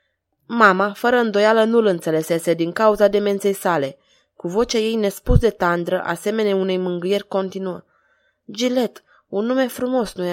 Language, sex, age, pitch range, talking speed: Romanian, female, 20-39, 180-225 Hz, 140 wpm